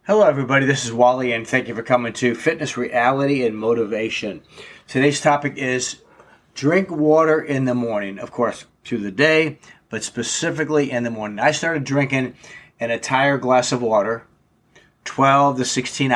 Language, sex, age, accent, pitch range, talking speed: English, male, 30-49, American, 115-140 Hz, 165 wpm